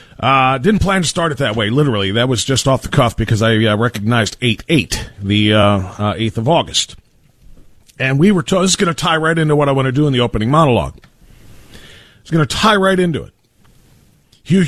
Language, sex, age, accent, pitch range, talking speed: English, male, 40-59, American, 120-175 Hz, 220 wpm